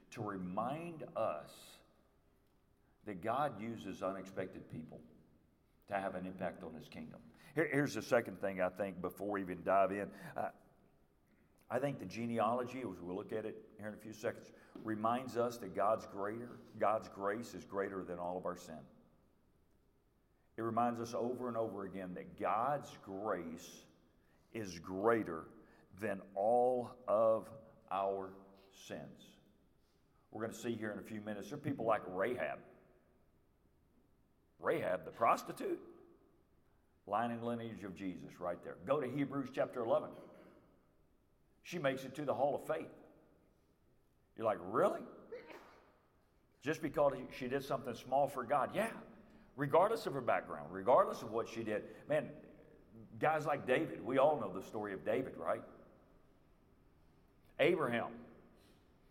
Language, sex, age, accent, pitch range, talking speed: English, male, 50-69, American, 95-125 Hz, 145 wpm